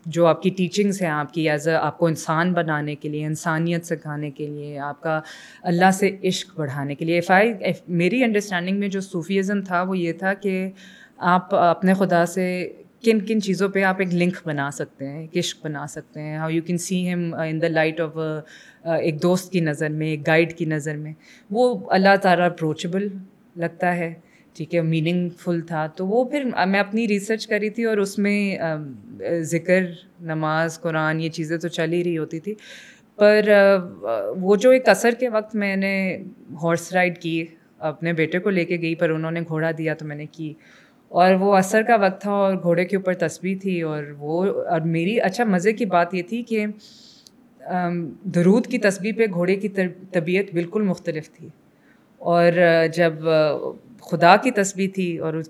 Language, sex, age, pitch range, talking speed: Urdu, female, 20-39, 165-200 Hz, 185 wpm